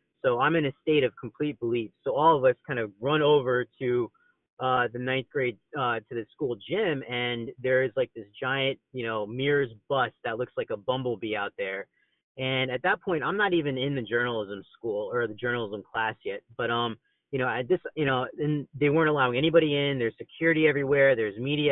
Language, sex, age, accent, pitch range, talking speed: English, male, 30-49, American, 115-145 Hz, 215 wpm